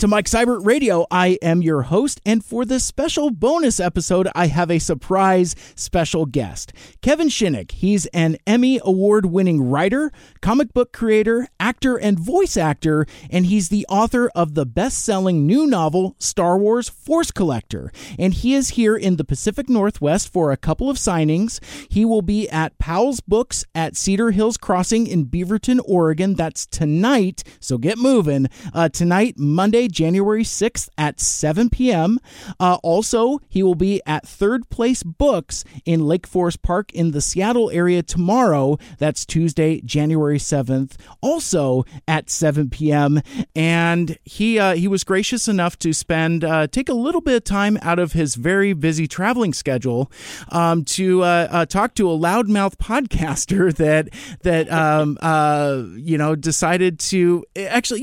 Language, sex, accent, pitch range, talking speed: English, male, American, 160-225 Hz, 160 wpm